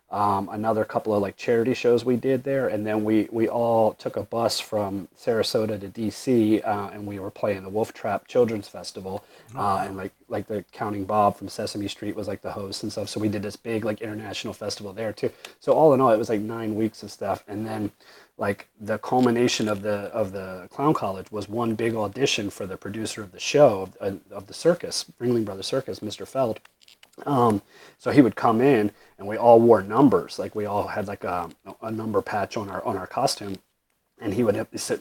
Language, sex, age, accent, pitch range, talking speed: English, male, 30-49, American, 100-115 Hz, 220 wpm